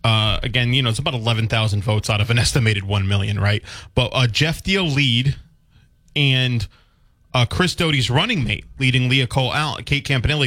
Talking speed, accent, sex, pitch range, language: 190 wpm, American, male, 105-125 Hz, English